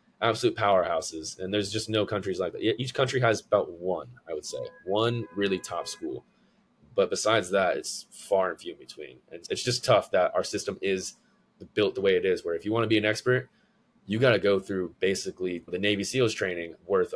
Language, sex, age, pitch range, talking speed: English, male, 20-39, 95-120 Hz, 215 wpm